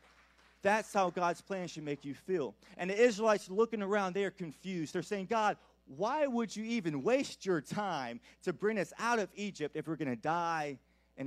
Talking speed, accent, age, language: 200 wpm, American, 30-49, English